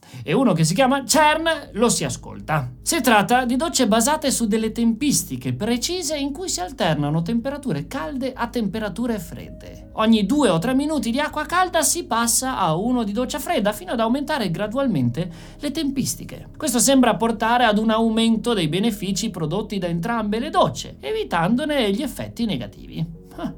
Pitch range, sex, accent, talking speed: 190-275 Hz, male, native, 165 wpm